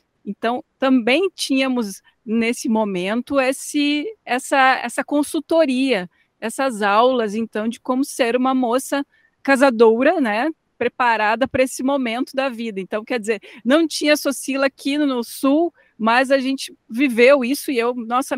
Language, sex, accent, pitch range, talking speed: Portuguese, female, Brazilian, 210-270 Hz, 135 wpm